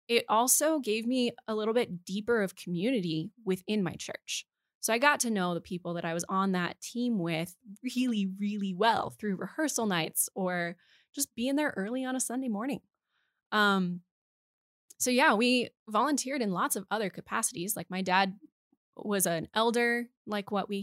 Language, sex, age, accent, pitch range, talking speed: English, female, 20-39, American, 175-225 Hz, 175 wpm